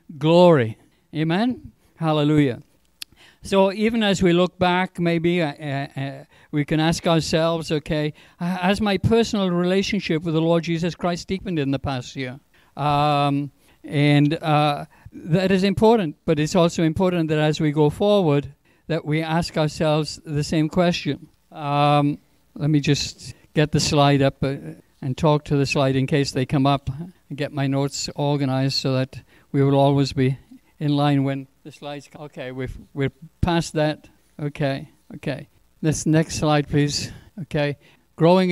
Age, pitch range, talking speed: 60-79, 140-170 Hz, 155 wpm